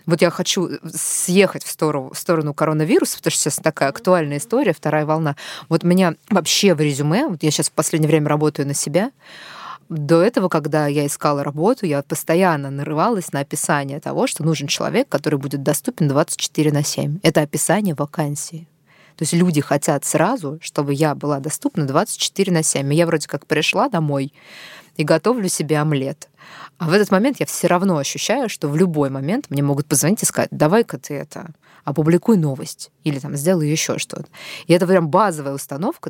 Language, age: Russian, 20-39